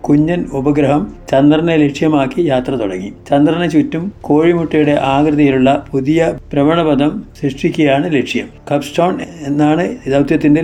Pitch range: 140-160 Hz